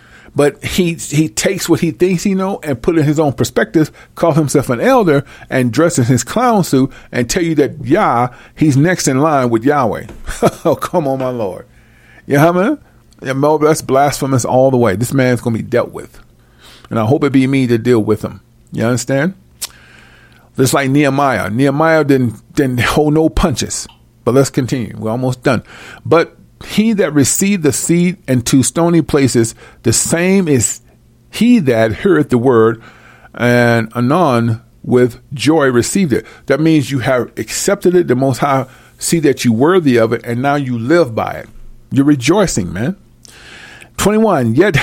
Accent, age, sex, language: American, 40-59, male, English